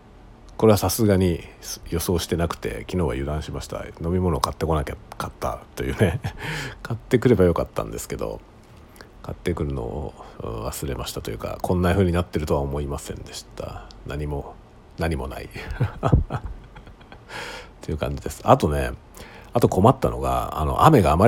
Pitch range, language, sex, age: 75-110 Hz, Japanese, male, 50-69